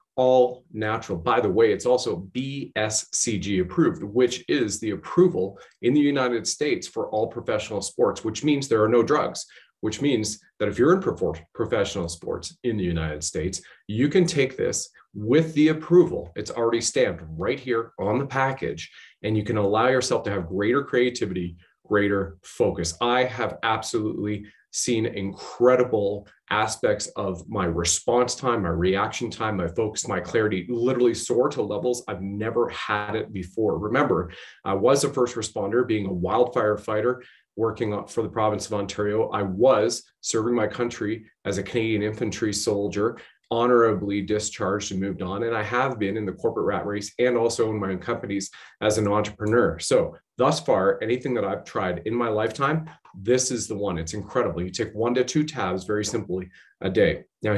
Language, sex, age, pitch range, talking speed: English, male, 30-49, 100-125 Hz, 175 wpm